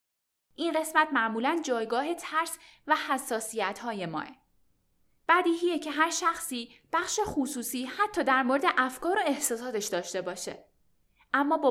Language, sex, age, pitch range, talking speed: Persian, female, 10-29, 230-320 Hz, 130 wpm